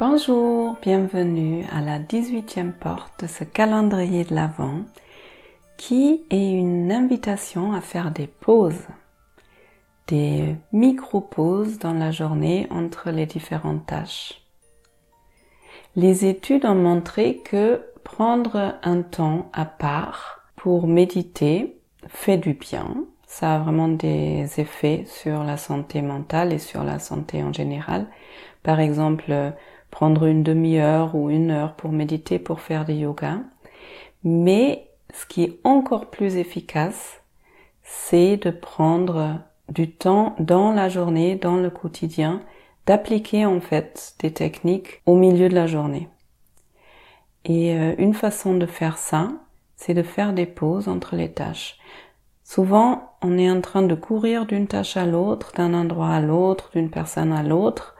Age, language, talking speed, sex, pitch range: 40-59, French, 140 wpm, female, 155-195 Hz